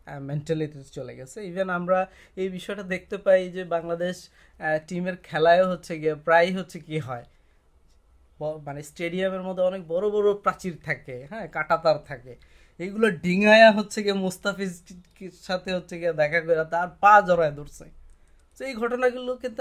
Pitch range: 145-200 Hz